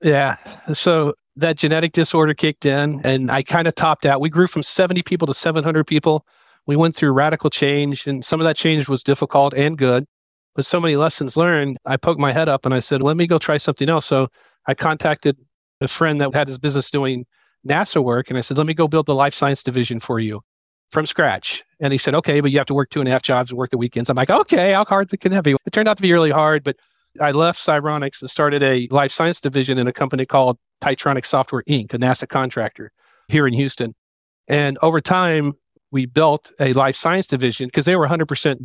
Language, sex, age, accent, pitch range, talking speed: English, male, 40-59, American, 130-155 Hz, 235 wpm